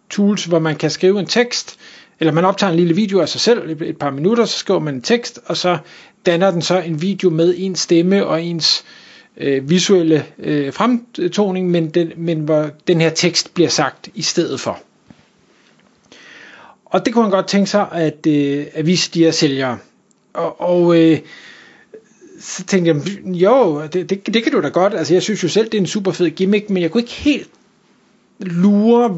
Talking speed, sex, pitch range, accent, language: 190 wpm, male, 160-200 Hz, native, Danish